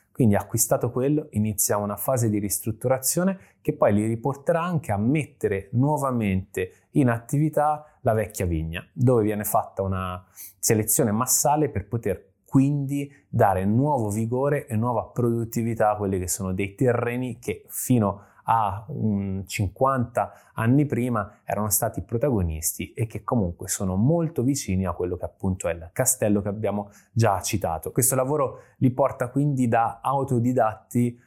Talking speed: 145 wpm